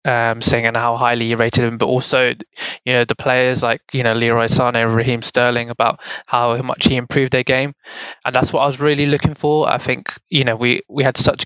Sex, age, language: male, 20-39, English